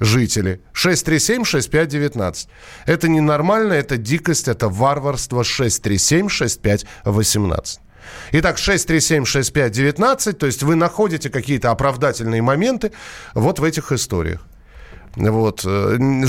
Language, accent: Russian, native